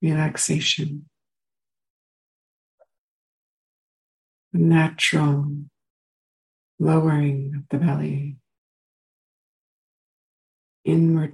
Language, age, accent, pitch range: English, 60-79, American, 145-175 Hz